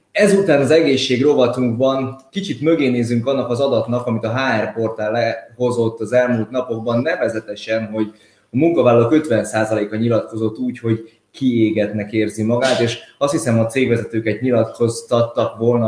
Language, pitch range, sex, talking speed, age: Hungarian, 110-130 Hz, male, 130 wpm, 20-39